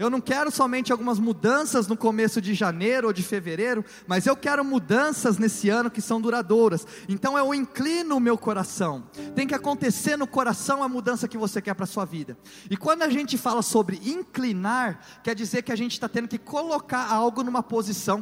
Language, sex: Portuguese, male